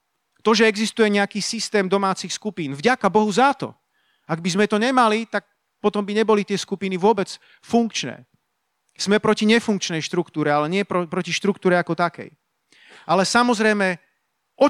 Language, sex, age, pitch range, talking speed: Slovak, male, 40-59, 170-225 Hz, 155 wpm